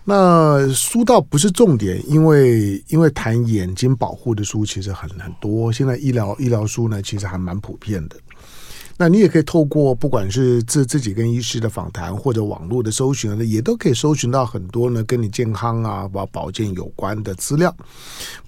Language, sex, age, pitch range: Chinese, male, 50-69, 105-135 Hz